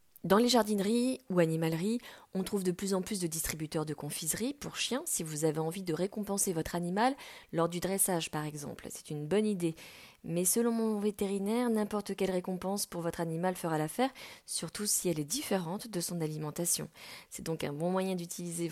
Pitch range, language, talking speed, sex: 165-205 Hz, French, 190 wpm, female